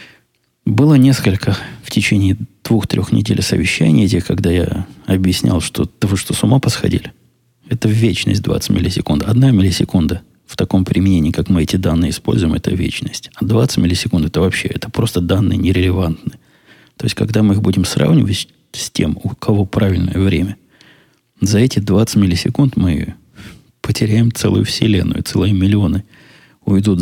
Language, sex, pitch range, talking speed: Russian, male, 90-115 Hz, 145 wpm